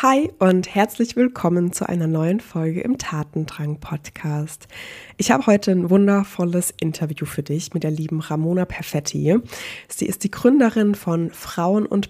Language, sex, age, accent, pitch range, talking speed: German, female, 20-39, German, 165-200 Hz, 150 wpm